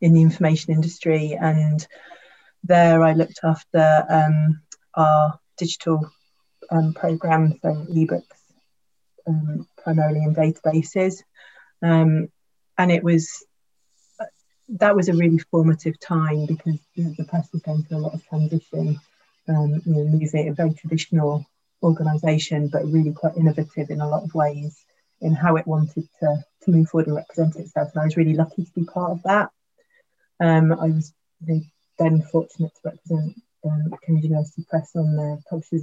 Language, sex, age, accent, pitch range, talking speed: English, female, 30-49, British, 155-170 Hz, 160 wpm